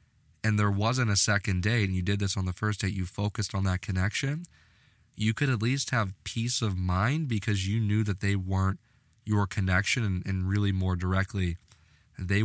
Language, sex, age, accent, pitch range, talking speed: English, male, 20-39, American, 95-110 Hz, 200 wpm